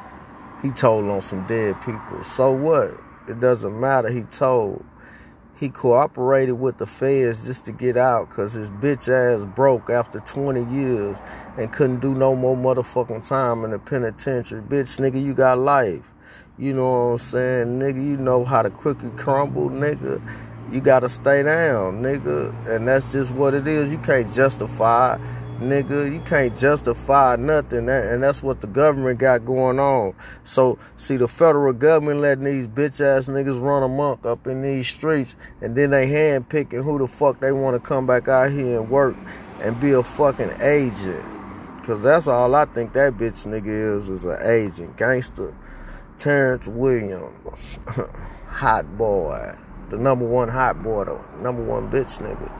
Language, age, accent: English, 30-49, American